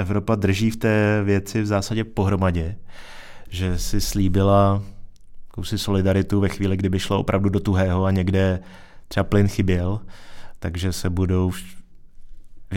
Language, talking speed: Czech, 135 wpm